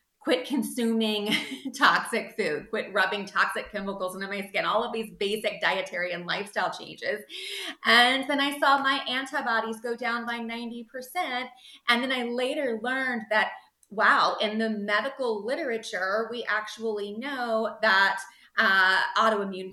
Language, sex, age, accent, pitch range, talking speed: English, female, 30-49, American, 180-230 Hz, 135 wpm